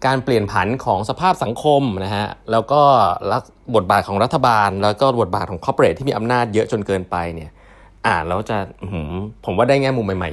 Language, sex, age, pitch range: Thai, male, 20-39, 90-125 Hz